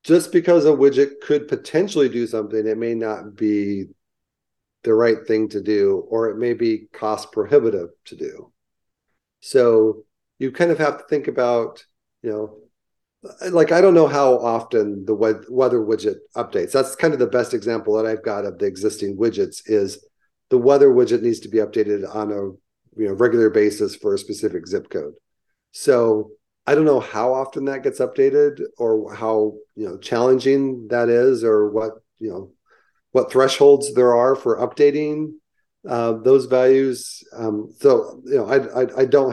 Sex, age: male, 40-59